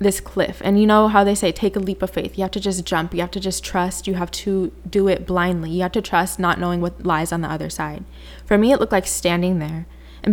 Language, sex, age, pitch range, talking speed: English, female, 20-39, 170-200 Hz, 285 wpm